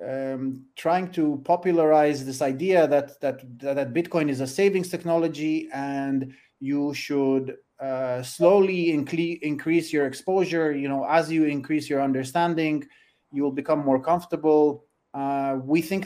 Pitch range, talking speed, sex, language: 140-165 Hz, 140 wpm, male, Turkish